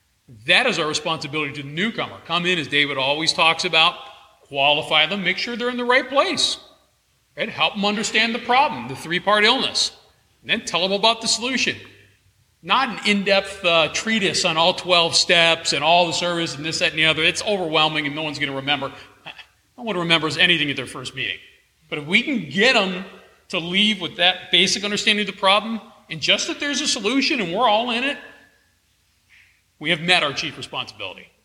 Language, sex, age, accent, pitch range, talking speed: English, male, 40-59, American, 155-210 Hz, 205 wpm